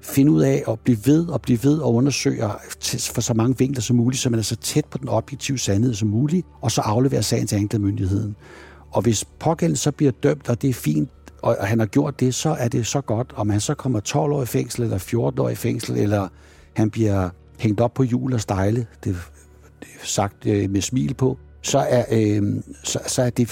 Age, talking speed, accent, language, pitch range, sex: 60-79, 225 wpm, native, Danish, 100-120 Hz, male